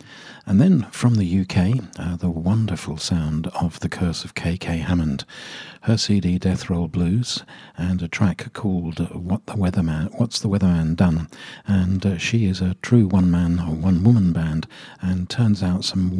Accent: British